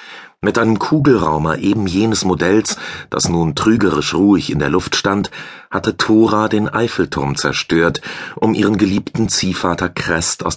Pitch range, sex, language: 80-105 Hz, male, German